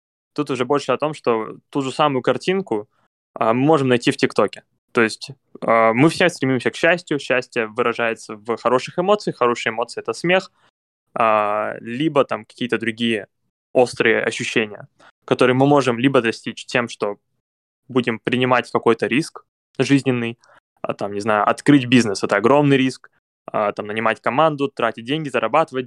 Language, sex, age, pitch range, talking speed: Russian, male, 20-39, 115-145 Hz, 160 wpm